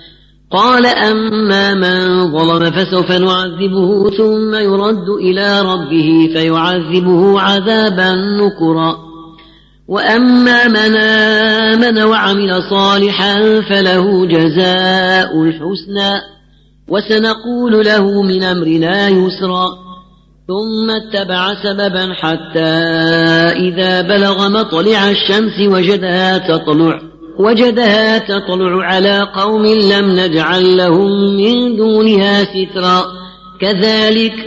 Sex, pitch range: female, 180-205 Hz